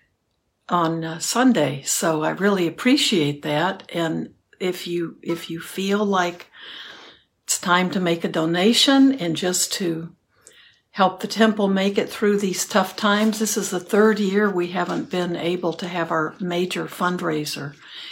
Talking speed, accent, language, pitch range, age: 155 wpm, American, English, 165-210 Hz, 60-79